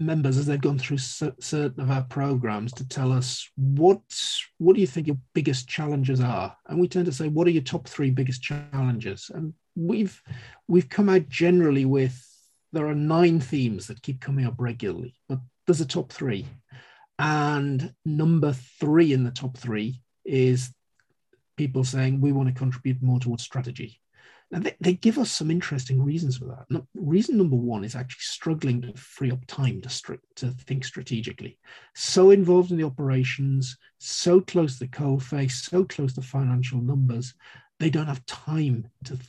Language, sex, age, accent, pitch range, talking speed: English, male, 40-59, British, 125-150 Hz, 175 wpm